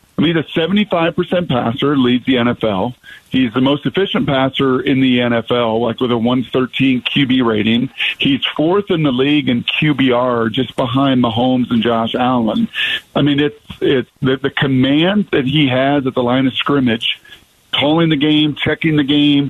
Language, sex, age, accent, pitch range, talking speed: English, male, 50-69, American, 125-150 Hz, 175 wpm